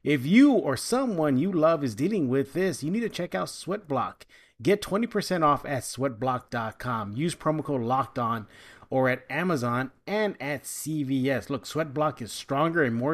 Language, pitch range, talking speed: English, 125-160 Hz, 170 wpm